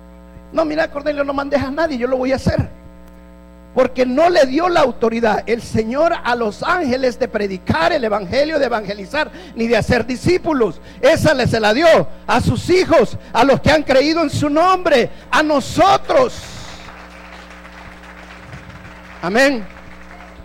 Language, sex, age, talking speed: Spanish, male, 50-69, 155 wpm